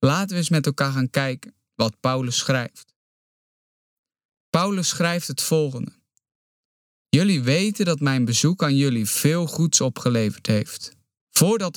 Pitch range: 130-170 Hz